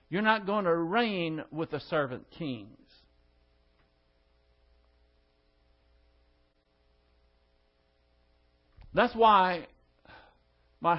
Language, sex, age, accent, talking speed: English, male, 60-79, American, 65 wpm